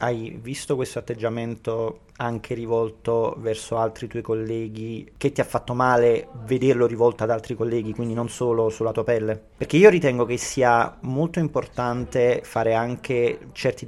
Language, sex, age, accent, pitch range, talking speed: Italian, male, 30-49, native, 115-130 Hz, 155 wpm